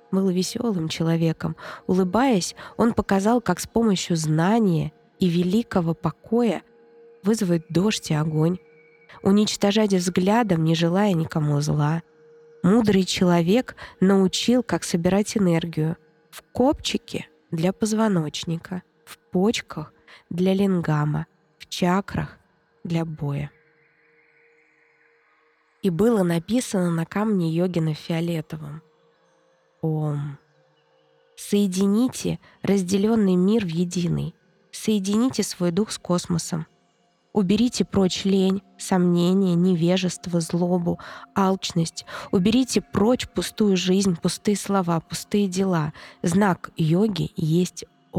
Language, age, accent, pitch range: Russian, 20-39, native, 165-205 Hz